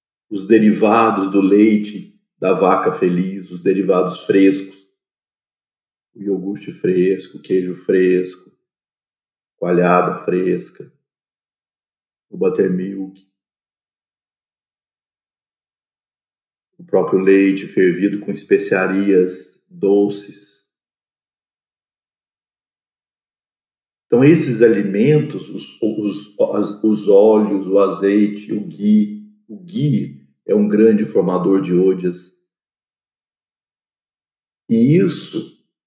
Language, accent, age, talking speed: Portuguese, Brazilian, 40-59, 80 wpm